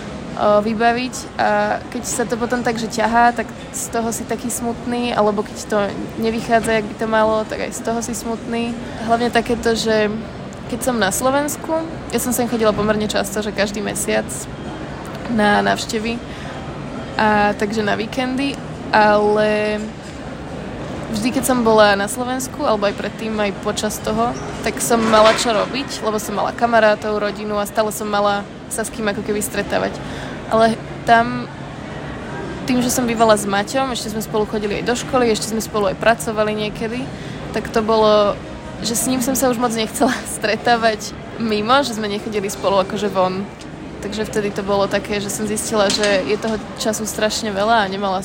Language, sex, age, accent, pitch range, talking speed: Czech, female, 20-39, native, 210-235 Hz, 175 wpm